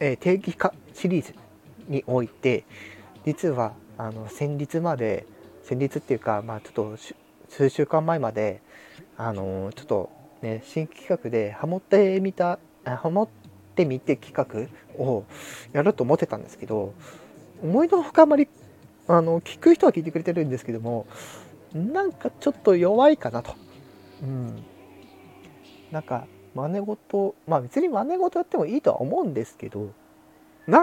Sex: male